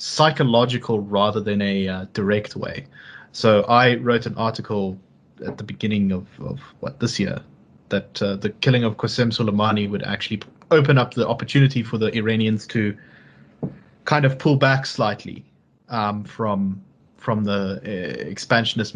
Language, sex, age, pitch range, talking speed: English, male, 20-39, 105-125 Hz, 150 wpm